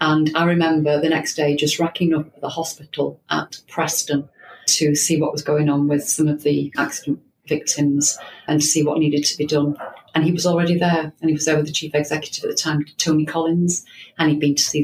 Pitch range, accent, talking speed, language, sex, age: 145-165 Hz, British, 230 wpm, English, female, 40-59